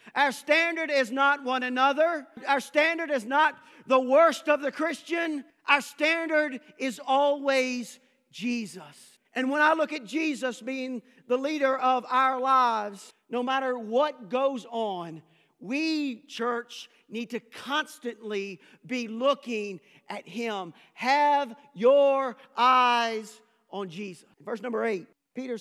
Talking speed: 130 wpm